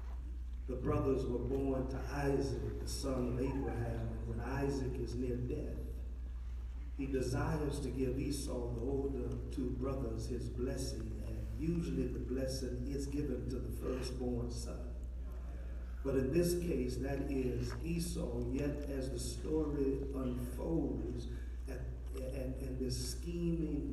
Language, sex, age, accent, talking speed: English, male, 50-69, American, 135 wpm